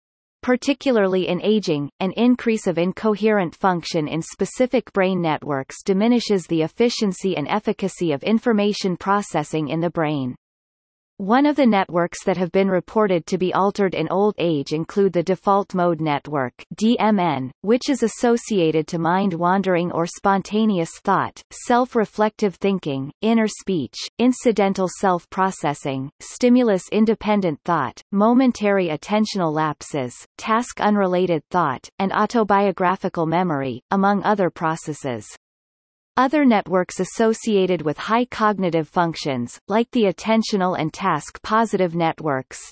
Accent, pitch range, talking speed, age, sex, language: American, 165-215 Hz, 115 wpm, 30-49, female, English